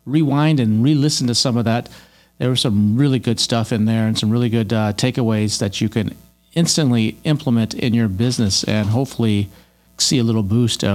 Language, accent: English, American